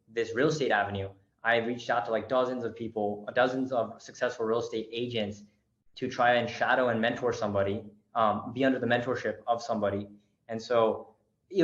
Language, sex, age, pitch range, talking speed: English, male, 20-39, 110-130 Hz, 180 wpm